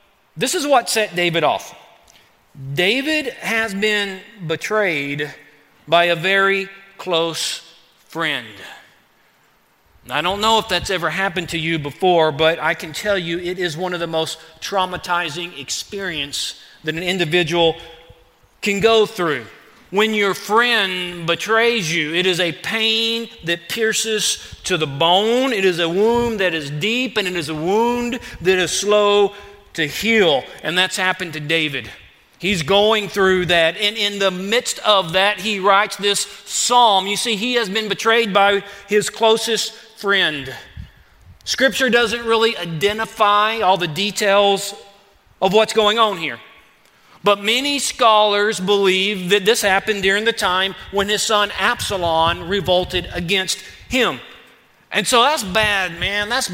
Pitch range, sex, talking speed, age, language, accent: 175-215 Hz, male, 150 wpm, 40-59, English, American